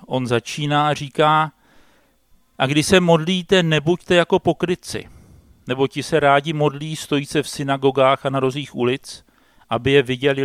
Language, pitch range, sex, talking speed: Czech, 125-150 Hz, male, 155 wpm